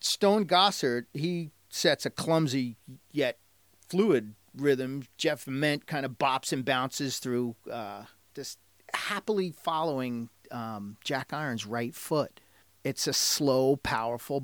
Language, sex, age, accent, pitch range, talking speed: English, male, 40-59, American, 115-150 Hz, 125 wpm